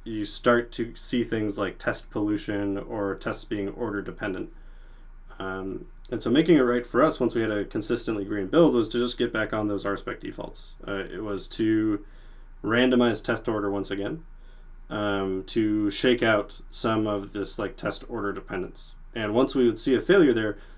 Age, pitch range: 30-49, 100-120 Hz